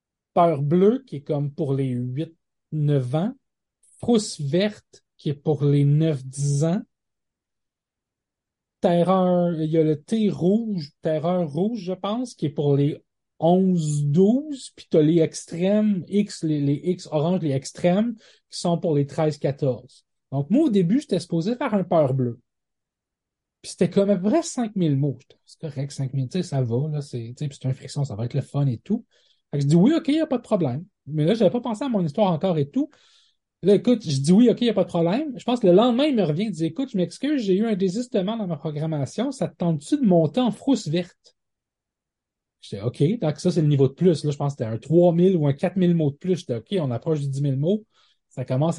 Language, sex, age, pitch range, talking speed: French, male, 30-49, 145-200 Hz, 230 wpm